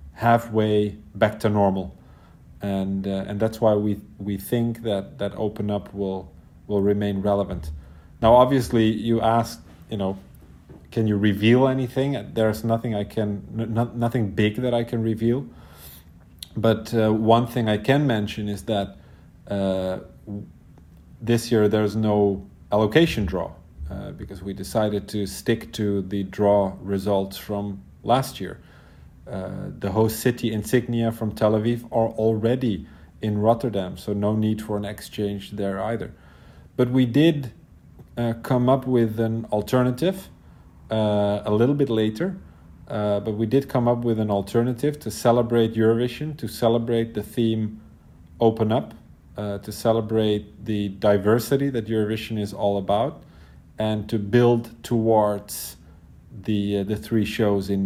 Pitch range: 100-115 Hz